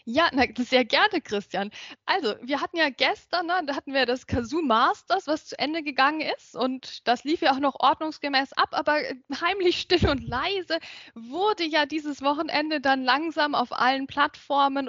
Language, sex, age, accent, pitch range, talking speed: German, female, 10-29, German, 260-330 Hz, 170 wpm